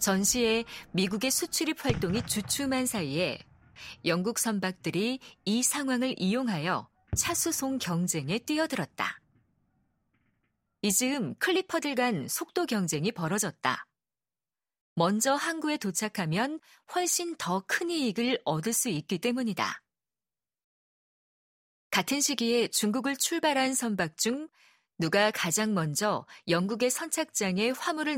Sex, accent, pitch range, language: female, native, 185-265 Hz, Korean